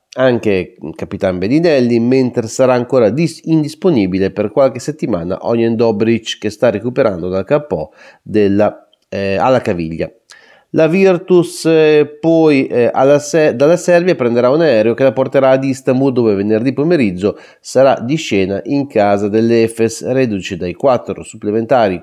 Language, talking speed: Italian, 140 wpm